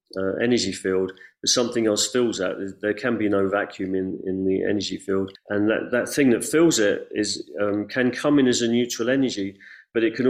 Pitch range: 100-120 Hz